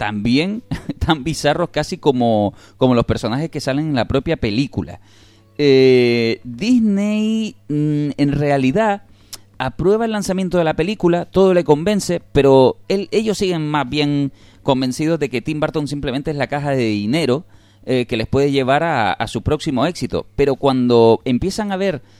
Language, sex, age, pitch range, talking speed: Spanish, male, 30-49, 115-170 Hz, 155 wpm